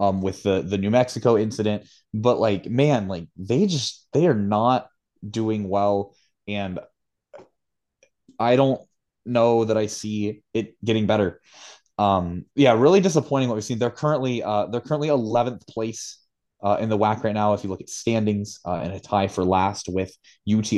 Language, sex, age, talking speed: English, male, 20-39, 175 wpm